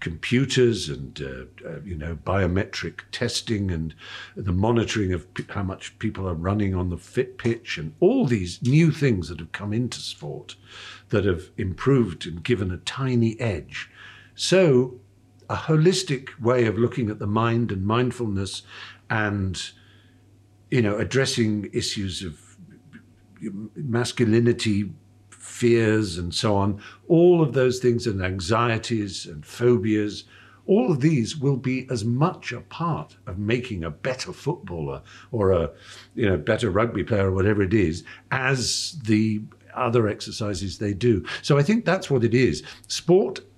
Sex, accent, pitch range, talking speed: male, British, 100-125 Hz, 150 wpm